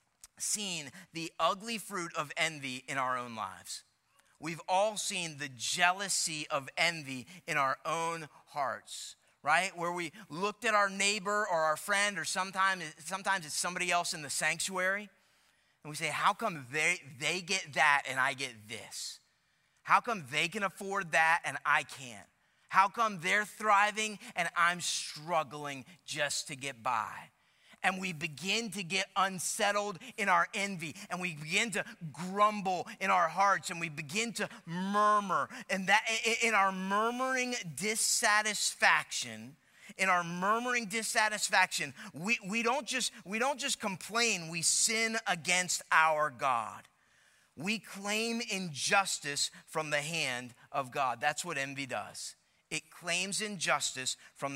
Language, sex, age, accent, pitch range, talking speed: English, male, 30-49, American, 155-210 Hz, 145 wpm